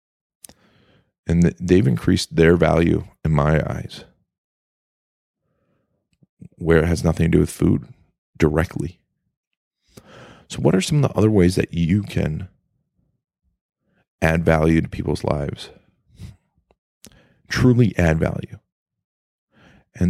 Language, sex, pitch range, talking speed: English, male, 80-100 Hz, 110 wpm